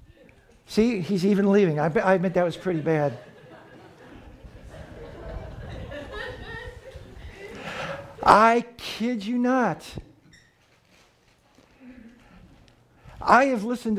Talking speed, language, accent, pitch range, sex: 75 wpm, English, American, 155-215 Hz, male